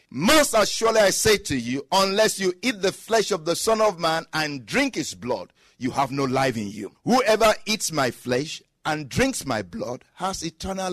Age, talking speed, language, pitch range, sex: 50-69, 200 wpm, English, 130-195 Hz, male